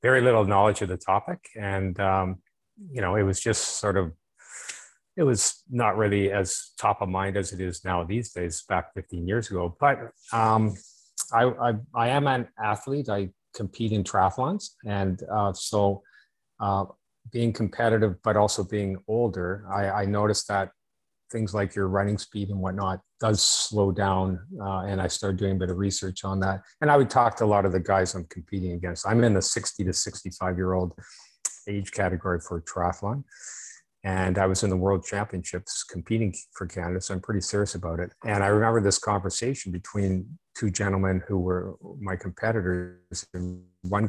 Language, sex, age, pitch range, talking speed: English, male, 30-49, 95-110 Hz, 180 wpm